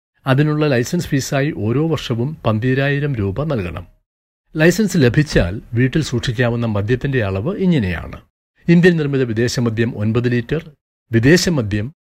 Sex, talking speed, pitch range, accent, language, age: male, 105 wpm, 105-150 Hz, native, Malayalam, 60-79